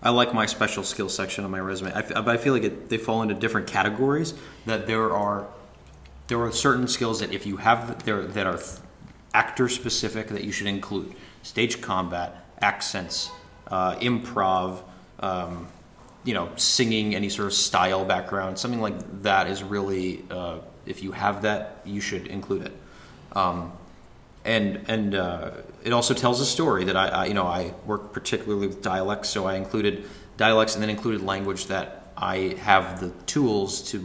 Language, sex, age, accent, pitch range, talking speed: English, male, 30-49, American, 95-115 Hz, 175 wpm